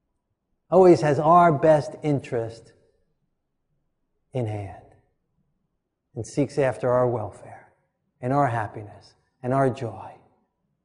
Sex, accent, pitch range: male, American, 120-150 Hz